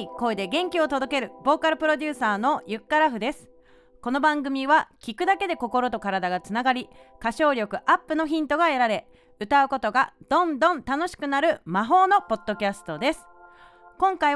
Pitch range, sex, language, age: 195-310 Hz, female, Japanese, 30-49